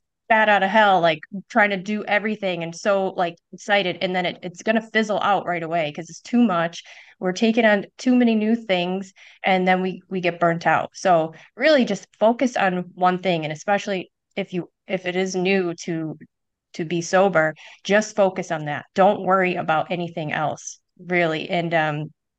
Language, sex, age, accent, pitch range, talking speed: English, female, 30-49, American, 170-200 Hz, 195 wpm